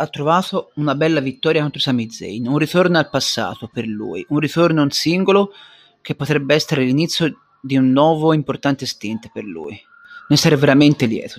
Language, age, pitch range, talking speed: Italian, 30-49, 125-165 Hz, 170 wpm